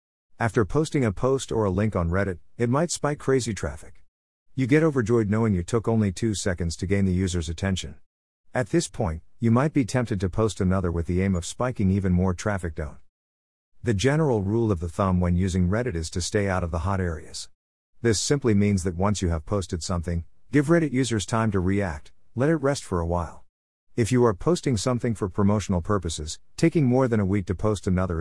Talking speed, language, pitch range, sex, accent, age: 215 wpm, English, 90-115 Hz, male, American, 50-69